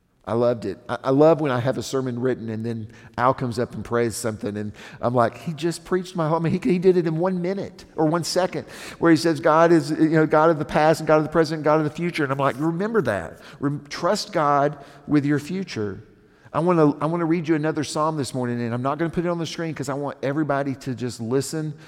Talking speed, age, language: 260 wpm, 50-69, English